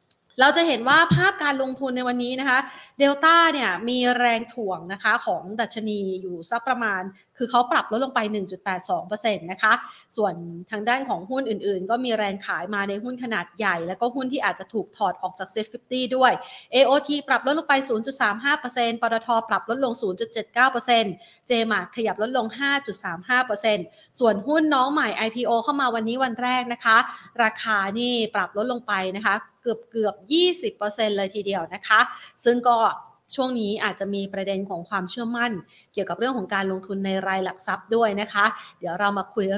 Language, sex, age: Thai, female, 30-49